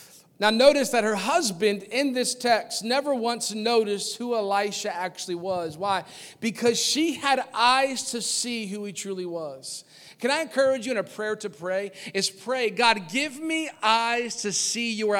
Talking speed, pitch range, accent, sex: 175 wpm, 170-245 Hz, American, male